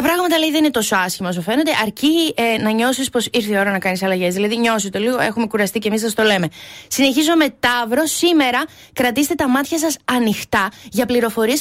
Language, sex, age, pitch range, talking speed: Greek, female, 20-39, 220-300 Hz, 205 wpm